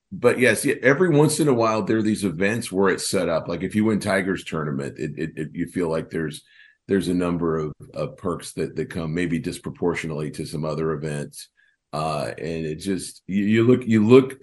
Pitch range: 85-110 Hz